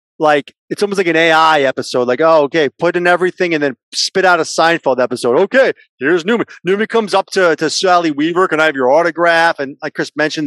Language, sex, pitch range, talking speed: English, male, 140-190 Hz, 225 wpm